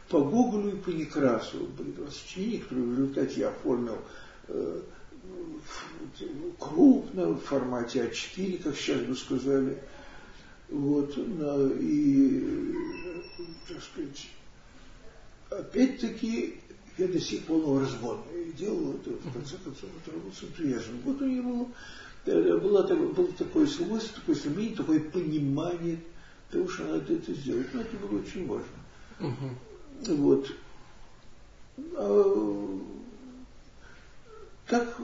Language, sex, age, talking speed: Russian, male, 60-79, 100 wpm